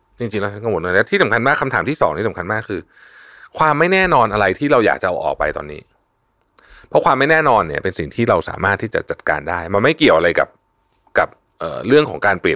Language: Thai